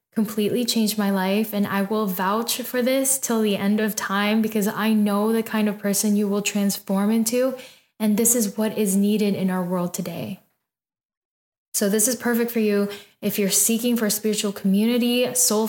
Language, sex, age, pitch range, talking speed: English, female, 10-29, 195-225 Hz, 190 wpm